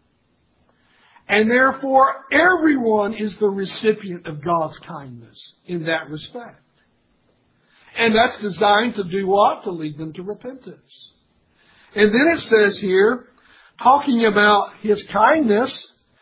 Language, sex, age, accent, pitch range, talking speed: English, male, 60-79, American, 180-235 Hz, 120 wpm